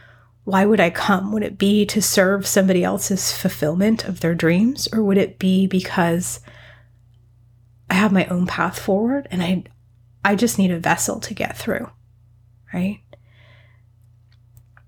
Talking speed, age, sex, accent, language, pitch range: 150 wpm, 30-49, female, American, English, 120-185 Hz